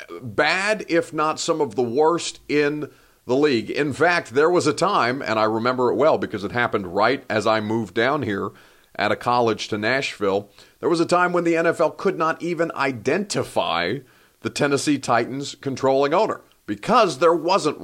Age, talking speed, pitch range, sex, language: 40-59, 180 wpm, 120-160 Hz, male, English